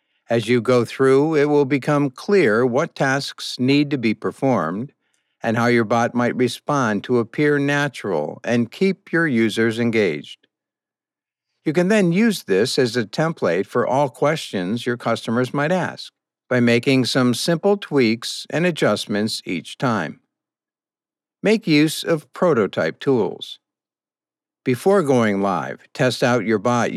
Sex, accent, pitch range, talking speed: male, American, 120-150 Hz, 140 wpm